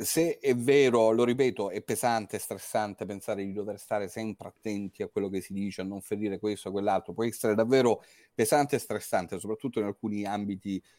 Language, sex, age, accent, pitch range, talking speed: Italian, male, 30-49, native, 100-115 Hz, 195 wpm